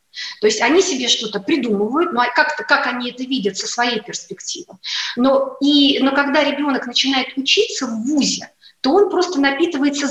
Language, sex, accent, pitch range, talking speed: Russian, female, native, 240-310 Hz, 165 wpm